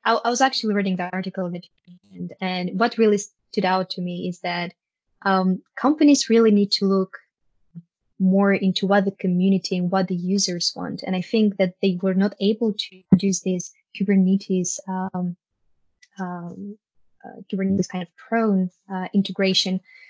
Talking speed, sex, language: 155 wpm, female, English